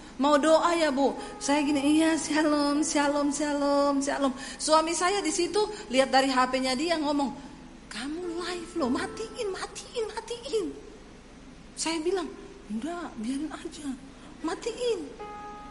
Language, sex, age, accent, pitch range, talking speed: English, female, 40-59, Indonesian, 235-315 Hz, 120 wpm